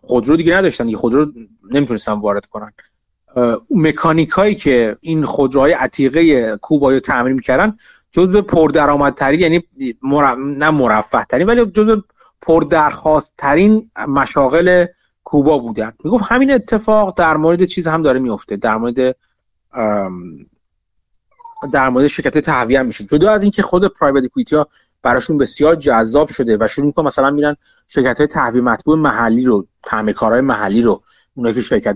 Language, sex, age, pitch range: Persian, male, 30-49, 125-165 Hz